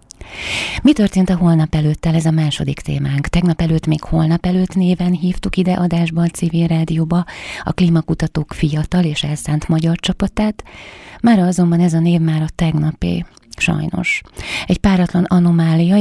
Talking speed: 150 wpm